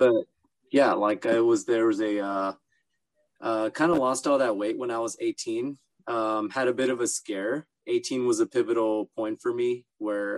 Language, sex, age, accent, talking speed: English, male, 20-39, American, 195 wpm